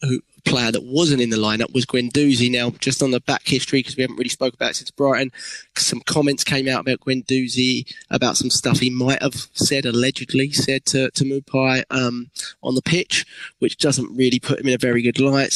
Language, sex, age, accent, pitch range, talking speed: English, male, 20-39, British, 125-145 Hz, 215 wpm